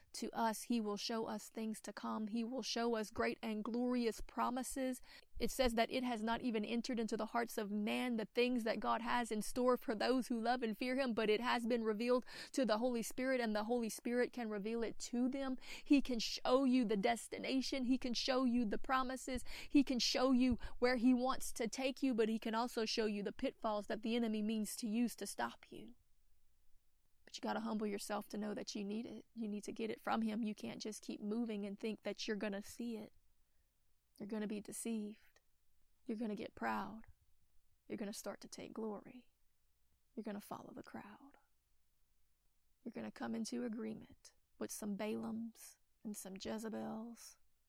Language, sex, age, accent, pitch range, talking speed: English, female, 30-49, American, 210-245 Hz, 200 wpm